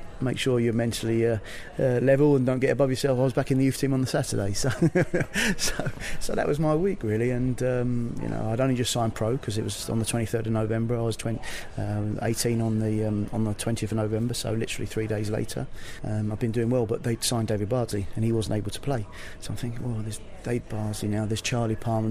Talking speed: 250 wpm